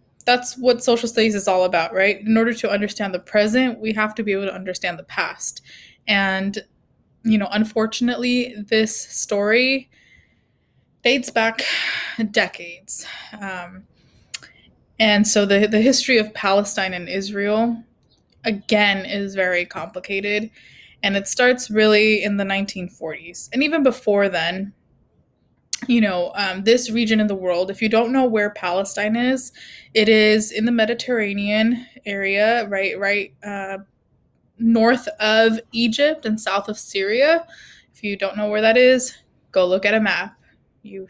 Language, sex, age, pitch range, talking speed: English, female, 20-39, 195-230 Hz, 145 wpm